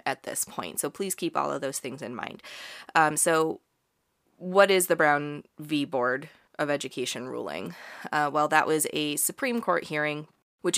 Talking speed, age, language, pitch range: 180 wpm, 20-39, English, 145-165 Hz